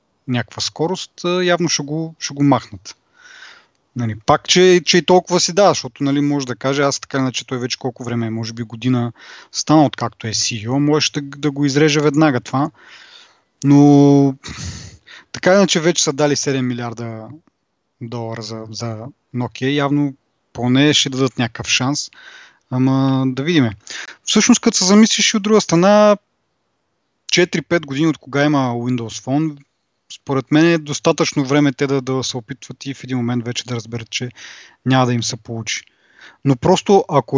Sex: male